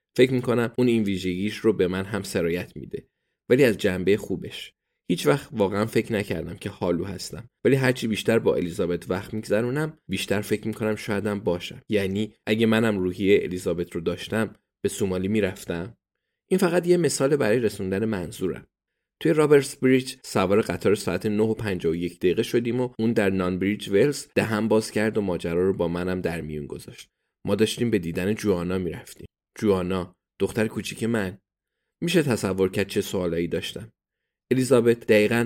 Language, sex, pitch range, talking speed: Persian, male, 95-120 Hz, 170 wpm